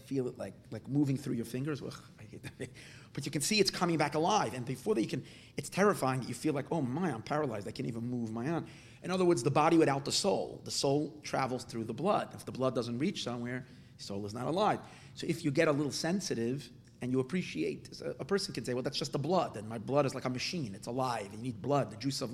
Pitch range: 125-160 Hz